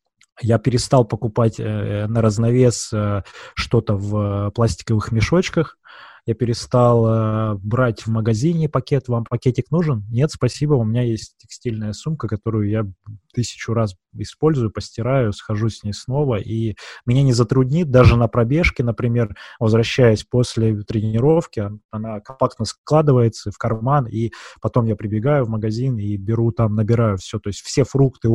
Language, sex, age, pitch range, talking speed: Russian, male, 20-39, 105-125 Hz, 150 wpm